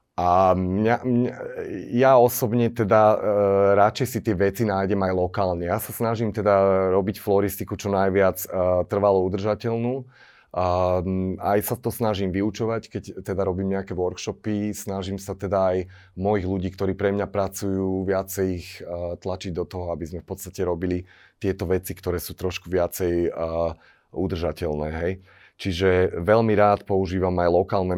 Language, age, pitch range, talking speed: Slovak, 30-49, 90-100 Hz, 155 wpm